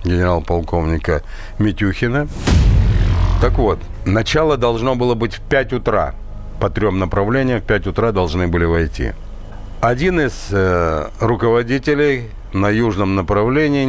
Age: 60-79